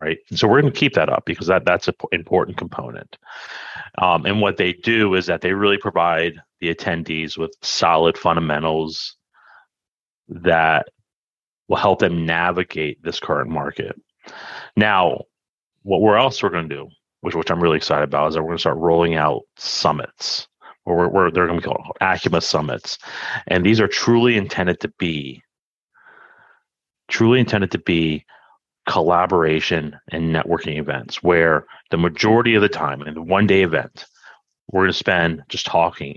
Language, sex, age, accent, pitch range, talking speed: English, male, 30-49, American, 80-95 Hz, 170 wpm